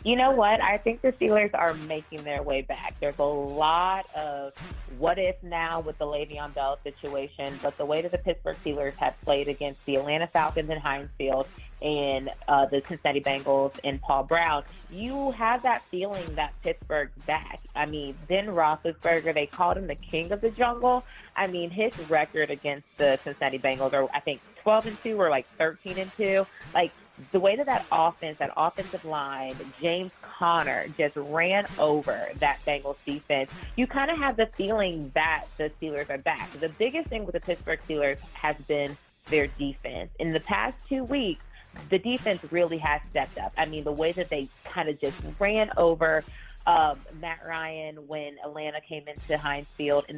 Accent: American